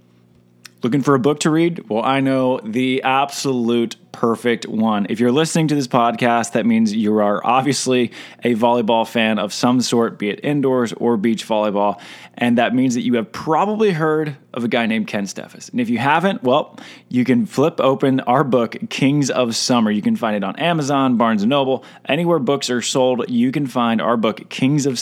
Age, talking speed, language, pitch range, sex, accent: 20-39, 200 wpm, English, 110-135 Hz, male, American